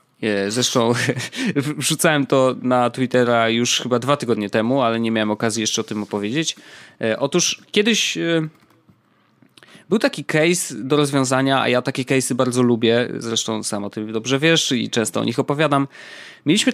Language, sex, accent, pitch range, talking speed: Polish, male, native, 120-165 Hz, 165 wpm